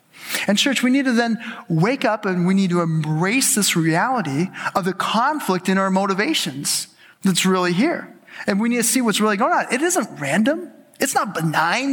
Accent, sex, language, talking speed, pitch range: American, male, English, 195 wpm, 175-230 Hz